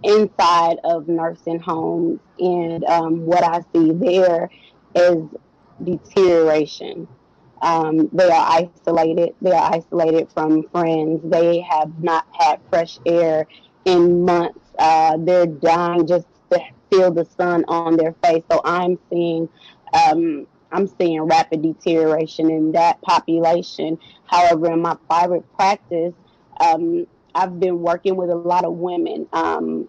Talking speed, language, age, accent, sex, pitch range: 135 wpm, English, 20-39, American, female, 165-185 Hz